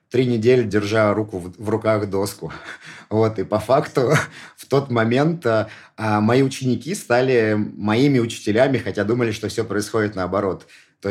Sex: male